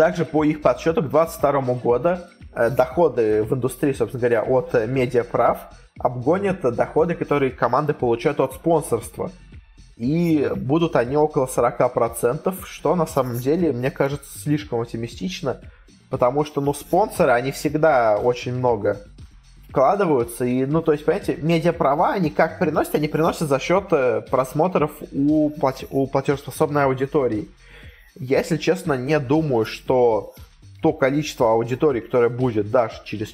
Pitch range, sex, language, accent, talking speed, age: 125-155 Hz, male, Russian, native, 135 wpm, 20-39